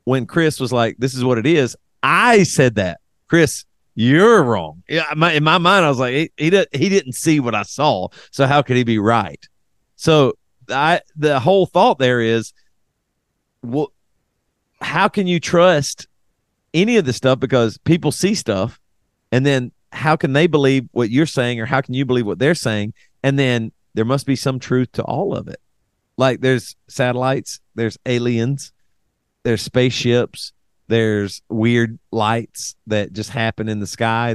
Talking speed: 175 wpm